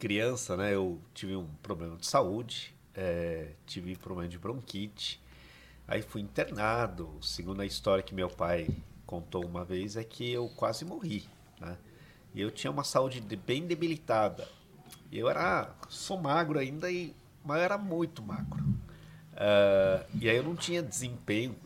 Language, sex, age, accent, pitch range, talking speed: Portuguese, male, 50-69, Brazilian, 95-145 Hz, 160 wpm